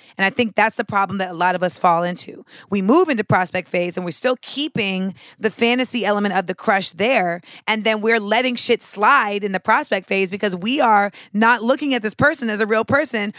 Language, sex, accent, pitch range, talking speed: English, female, American, 200-250 Hz, 230 wpm